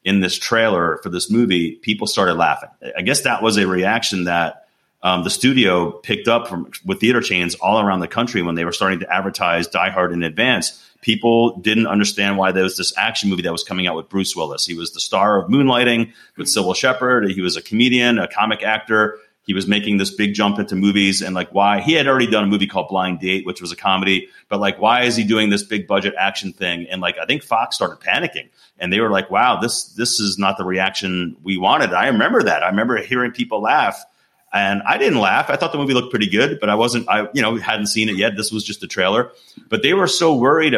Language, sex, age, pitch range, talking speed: English, male, 30-49, 90-110 Hz, 245 wpm